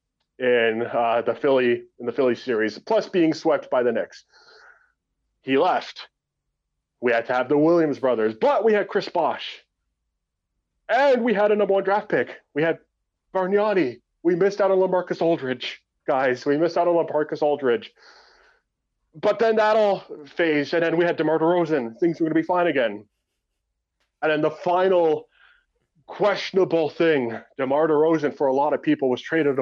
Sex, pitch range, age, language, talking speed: male, 135-175 Hz, 20-39, English, 170 wpm